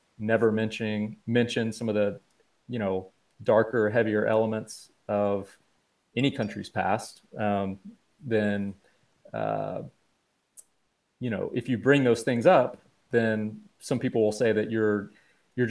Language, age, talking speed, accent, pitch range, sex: English, 30-49, 130 wpm, American, 105-120 Hz, male